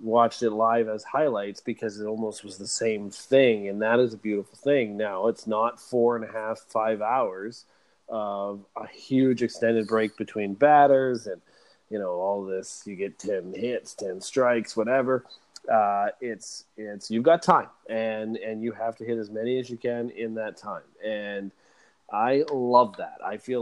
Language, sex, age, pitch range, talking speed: English, male, 30-49, 105-120 Hz, 185 wpm